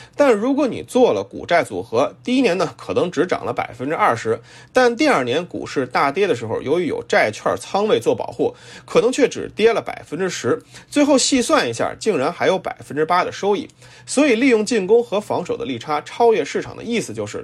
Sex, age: male, 30-49